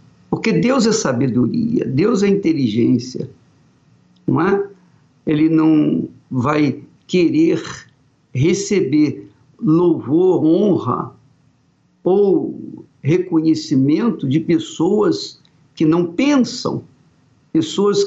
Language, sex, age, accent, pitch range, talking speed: Portuguese, male, 60-79, Brazilian, 150-205 Hz, 80 wpm